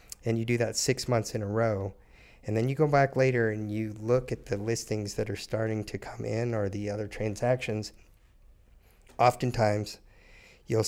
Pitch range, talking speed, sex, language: 100-115 Hz, 180 wpm, male, English